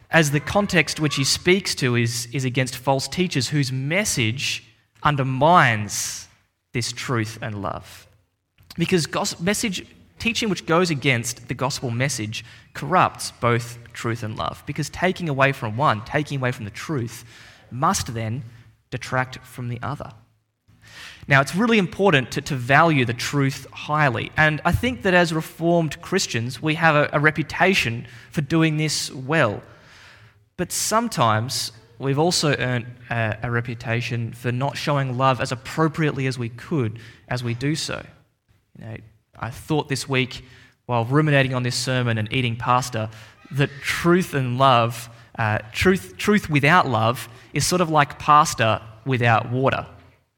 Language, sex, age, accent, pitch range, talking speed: English, male, 20-39, Australian, 115-150 Hz, 150 wpm